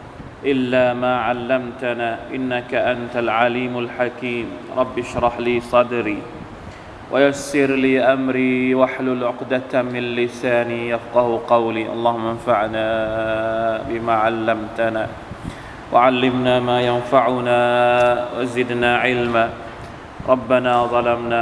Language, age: Thai, 20-39